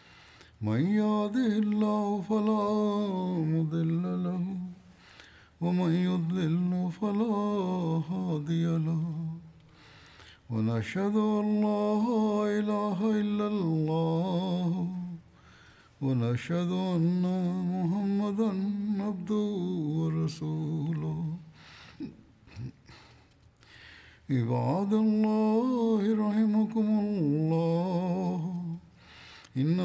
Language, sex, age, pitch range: Swahili, male, 60-79, 160-205 Hz